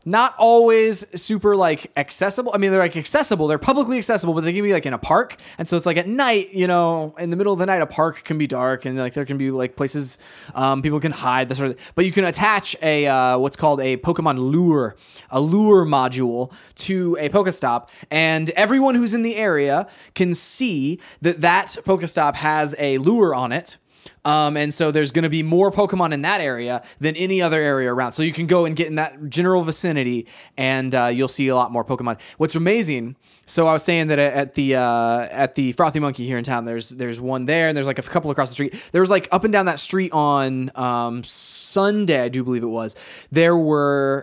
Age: 20-39